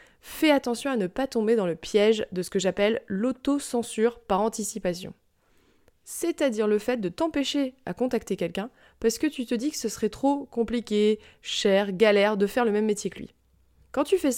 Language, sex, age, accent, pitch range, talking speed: French, female, 20-39, French, 195-255 Hz, 190 wpm